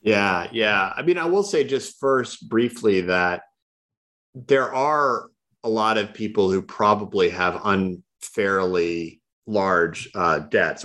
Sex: male